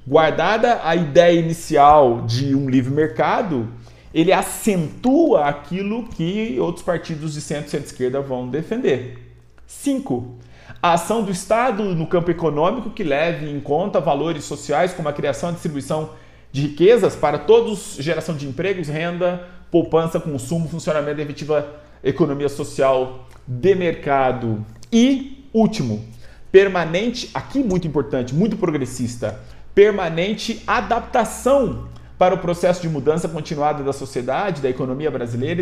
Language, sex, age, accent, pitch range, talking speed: English, male, 40-59, Brazilian, 145-215 Hz, 130 wpm